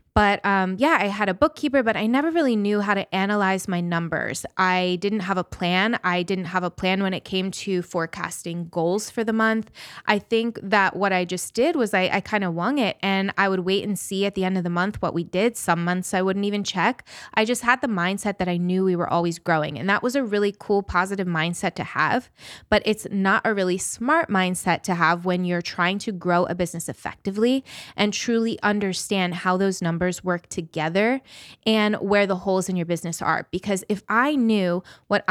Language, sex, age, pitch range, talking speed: English, female, 20-39, 175-205 Hz, 220 wpm